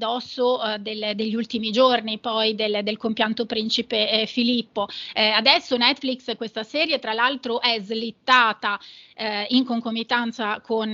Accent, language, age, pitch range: native, Italian, 30-49, 225-255 Hz